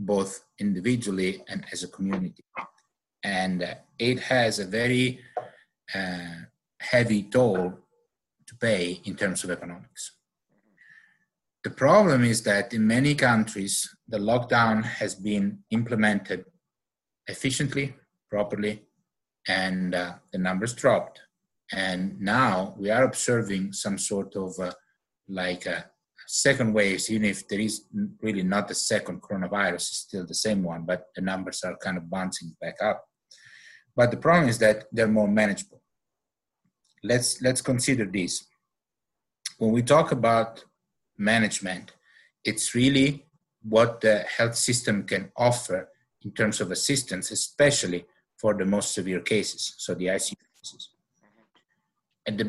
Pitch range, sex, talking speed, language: 95-125 Hz, male, 135 wpm, English